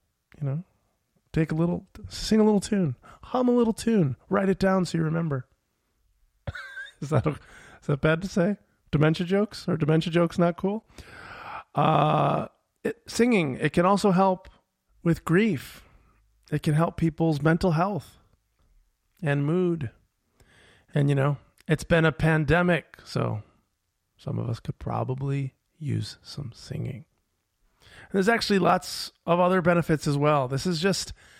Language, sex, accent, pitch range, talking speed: English, male, American, 130-175 Hz, 145 wpm